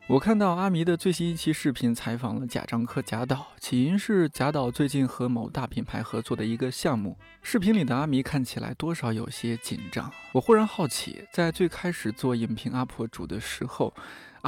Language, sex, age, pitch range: Chinese, male, 20-39, 115-165 Hz